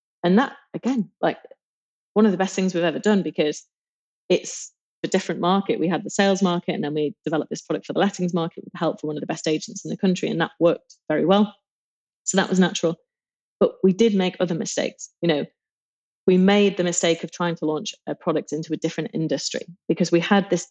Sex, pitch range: female, 160-190 Hz